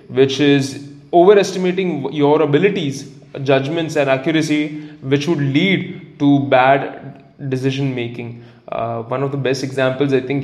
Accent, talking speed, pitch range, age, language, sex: Indian, 130 wpm, 130-150 Hz, 10-29, English, male